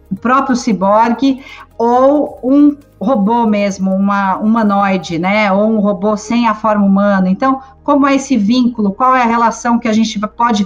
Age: 40-59